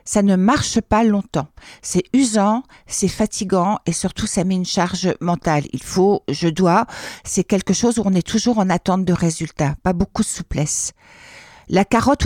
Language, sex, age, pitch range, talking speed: French, female, 60-79, 180-220 Hz, 180 wpm